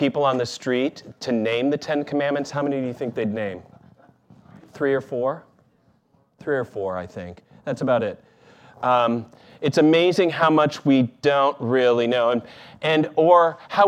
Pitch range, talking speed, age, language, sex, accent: 125-155 Hz, 165 wpm, 40-59, English, male, American